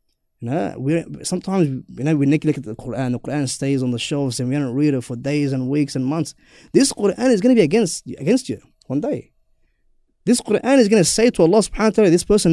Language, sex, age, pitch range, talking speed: English, male, 20-39, 130-170 Hz, 240 wpm